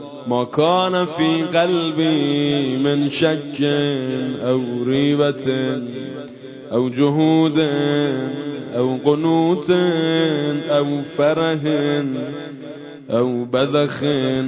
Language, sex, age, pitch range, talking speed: Persian, male, 20-39, 135-160 Hz, 65 wpm